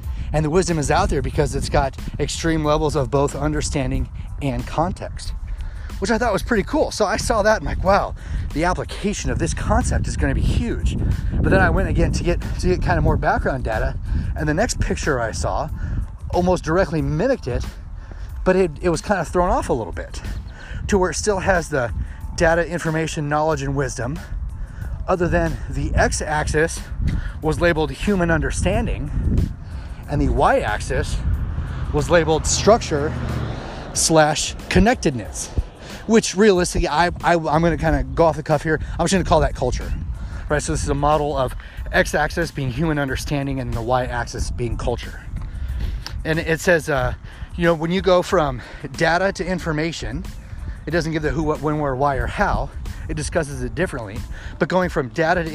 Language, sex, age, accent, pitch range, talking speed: English, male, 30-49, American, 115-165 Hz, 180 wpm